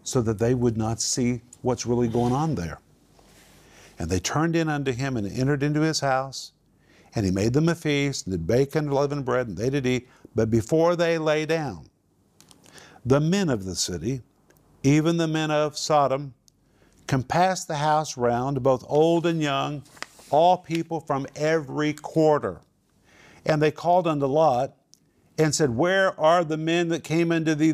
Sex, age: male, 50-69